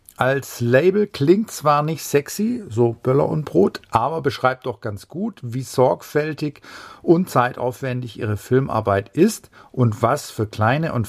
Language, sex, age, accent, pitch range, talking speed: German, male, 50-69, German, 110-145 Hz, 145 wpm